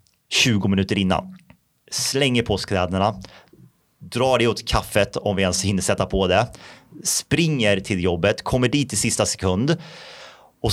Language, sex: Swedish, male